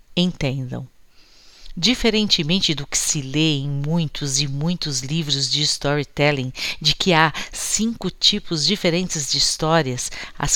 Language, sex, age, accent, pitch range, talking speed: Portuguese, female, 50-69, Brazilian, 135-170 Hz, 125 wpm